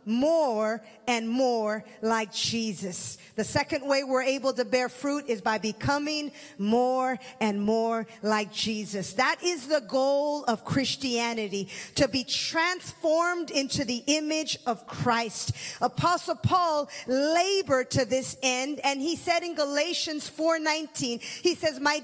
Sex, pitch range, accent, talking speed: female, 245-315 Hz, American, 135 wpm